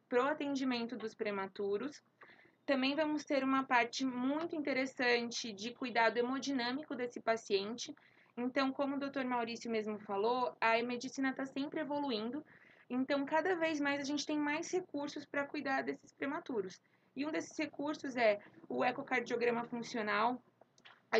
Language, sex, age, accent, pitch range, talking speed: Portuguese, female, 20-39, Brazilian, 225-270 Hz, 140 wpm